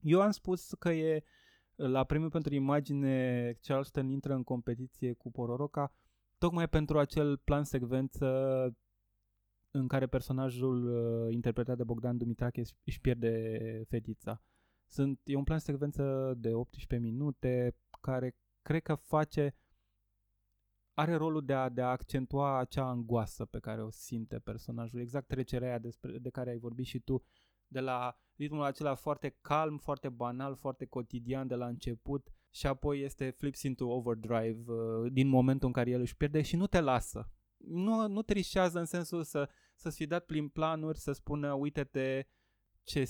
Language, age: Romanian, 20-39